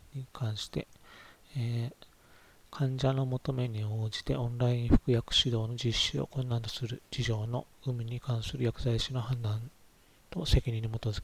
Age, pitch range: 40-59, 110-130 Hz